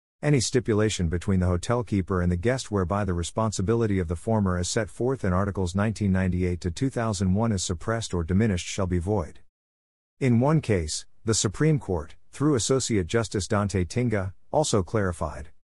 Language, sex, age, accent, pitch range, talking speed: English, male, 50-69, American, 90-115 Hz, 165 wpm